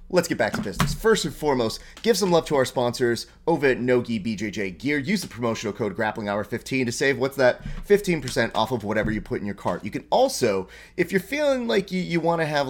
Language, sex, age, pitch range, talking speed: English, male, 30-49, 95-125 Hz, 240 wpm